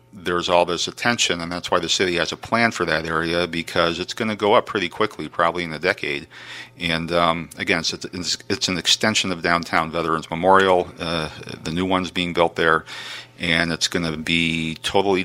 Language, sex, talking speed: English, male, 200 wpm